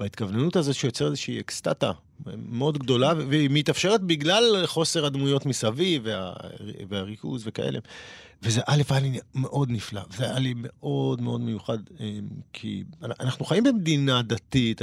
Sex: male